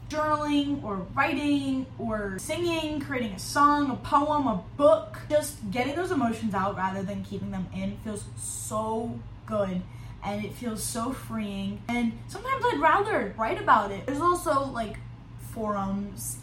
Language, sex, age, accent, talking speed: English, female, 10-29, American, 150 wpm